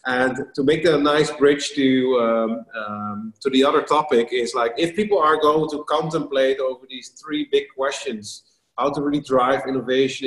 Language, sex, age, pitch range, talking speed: English, male, 30-49, 125-150 Hz, 185 wpm